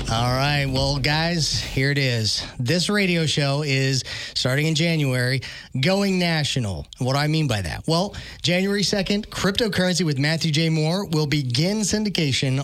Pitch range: 130-165 Hz